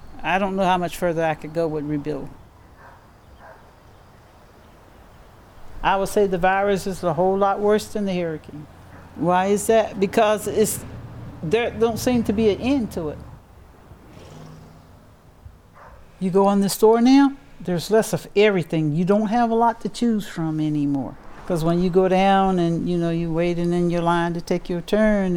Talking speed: 175 wpm